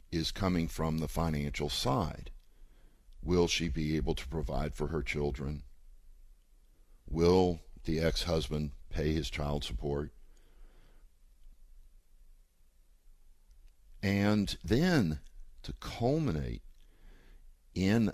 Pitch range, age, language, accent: 70-90 Hz, 50-69, English, American